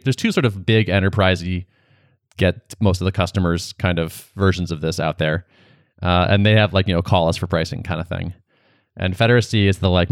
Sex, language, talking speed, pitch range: male, English, 220 wpm, 90-115 Hz